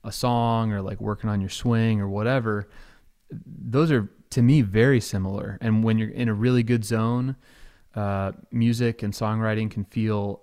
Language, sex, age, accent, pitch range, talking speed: English, male, 20-39, American, 105-125 Hz, 175 wpm